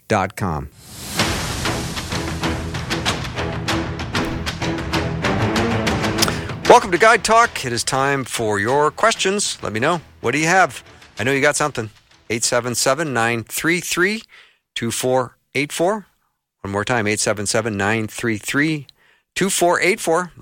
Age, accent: 50-69, American